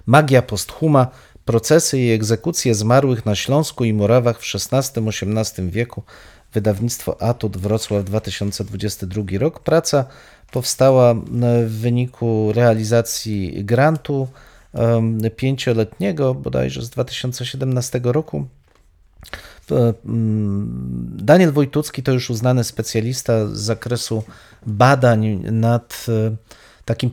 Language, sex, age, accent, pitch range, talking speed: Polish, male, 40-59, native, 110-130 Hz, 90 wpm